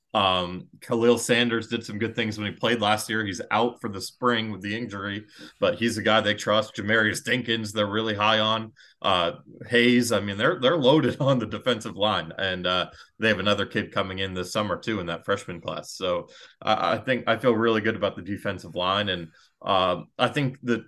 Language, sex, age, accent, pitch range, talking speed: English, male, 30-49, American, 95-120 Hz, 215 wpm